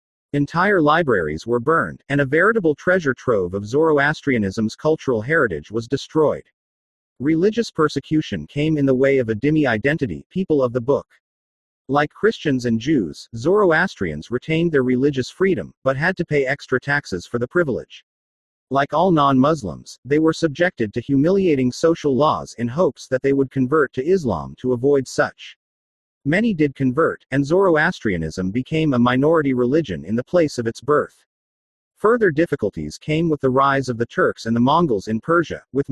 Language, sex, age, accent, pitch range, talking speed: English, male, 40-59, American, 115-155 Hz, 165 wpm